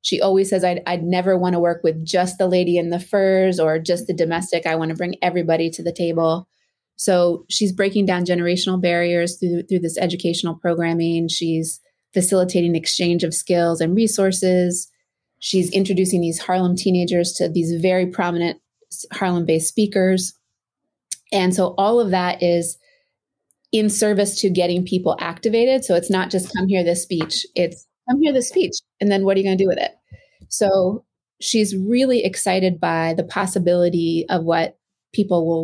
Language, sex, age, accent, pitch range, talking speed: English, female, 30-49, American, 170-190 Hz, 175 wpm